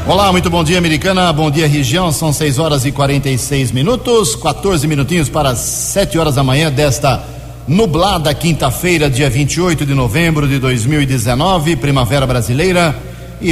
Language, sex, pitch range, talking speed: Portuguese, male, 130-160 Hz, 150 wpm